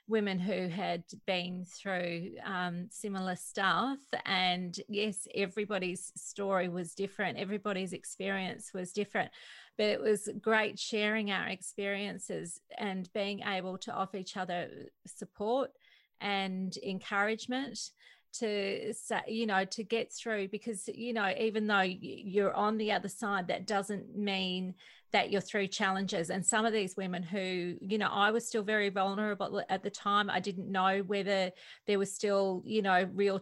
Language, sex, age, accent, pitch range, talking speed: English, female, 30-49, Australian, 185-210 Hz, 150 wpm